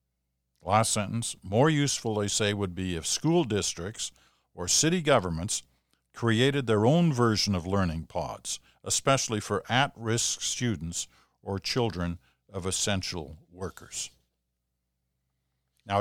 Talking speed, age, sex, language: 115 wpm, 60-79, male, English